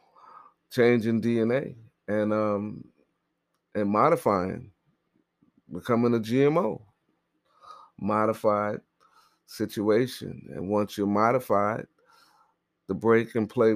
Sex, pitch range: male, 100-135 Hz